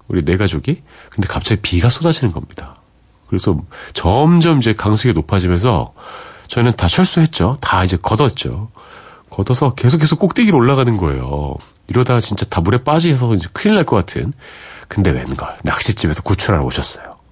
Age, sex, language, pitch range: 40-59, male, Korean, 95-135 Hz